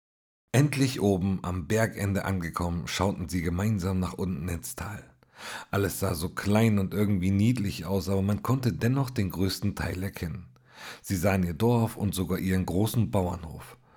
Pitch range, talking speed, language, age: 100-135 Hz, 160 wpm, German, 50-69